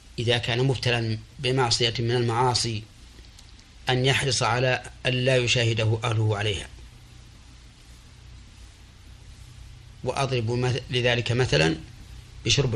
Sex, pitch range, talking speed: male, 105-125 Hz, 80 wpm